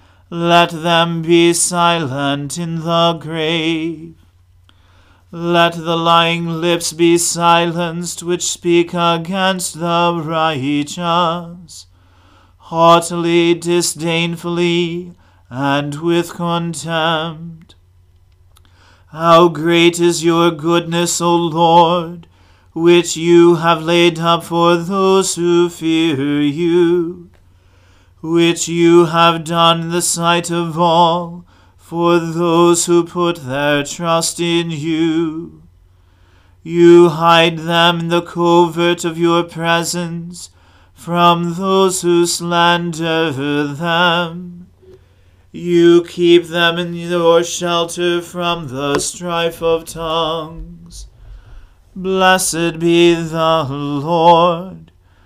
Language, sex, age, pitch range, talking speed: English, male, 40-59, 160-170 Hz, 90 wpm